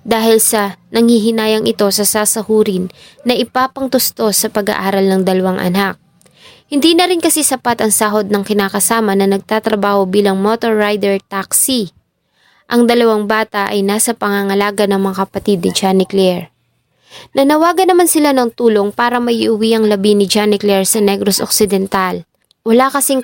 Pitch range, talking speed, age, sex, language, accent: 195-235 Hz, 140 wpm, 20-39, female, English, Filipino